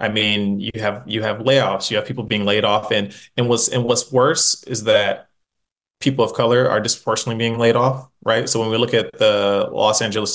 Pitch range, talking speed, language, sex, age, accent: 110-125 Hz, 220 wpm, English, male, 20-39, American